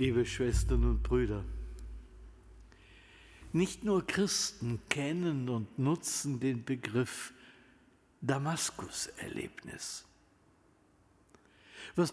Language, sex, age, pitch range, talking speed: German, male, 60-79, 110-160 Hz, 70 wpm